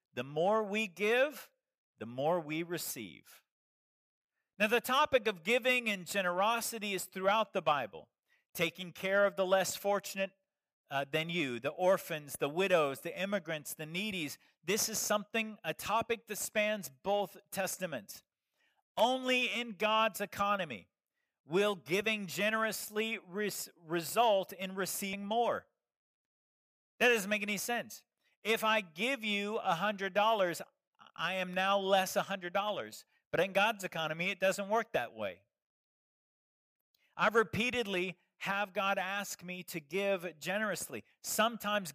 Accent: American